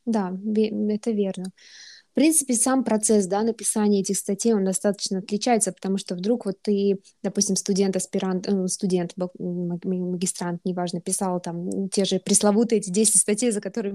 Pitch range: 190-225 Hz